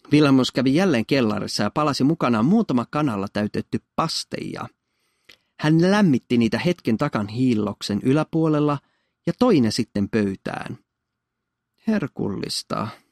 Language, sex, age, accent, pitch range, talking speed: Finnish, male, 30-49, native, 105-150 Hz, 110 wpm